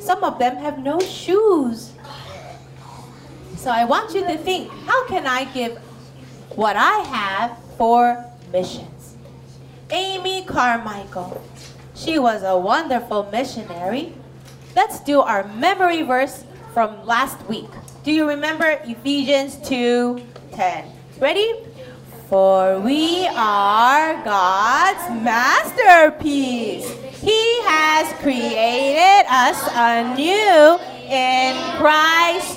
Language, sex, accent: Korean, female, American